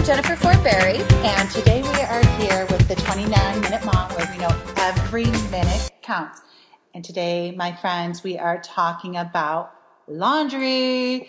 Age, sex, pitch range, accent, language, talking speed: 30-49, female, 185-245 Hz, American, English, 145 wpm